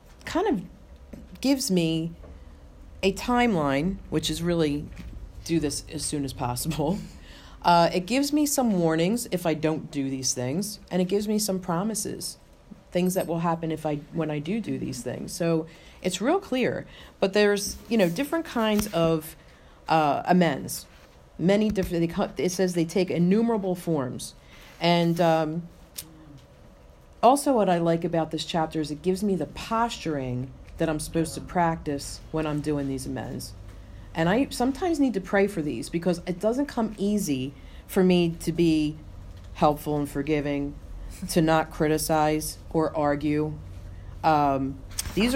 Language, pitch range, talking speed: English, 145-185 Hz, 155 wpm